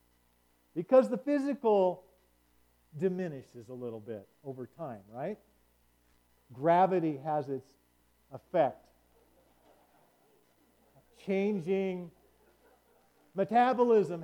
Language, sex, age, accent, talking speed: English, male, 50-69, American, 65 wpm